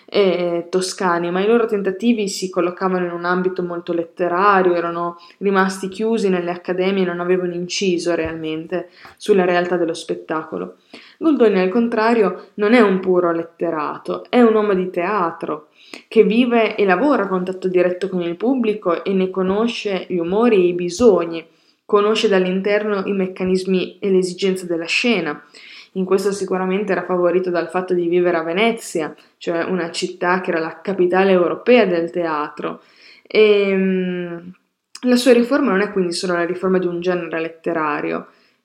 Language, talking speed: Italian, 160 wpm